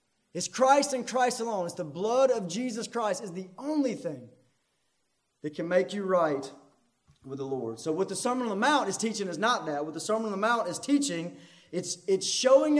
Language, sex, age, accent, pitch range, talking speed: English, male, 30-49, American, 175-270 Hz, 215 wpm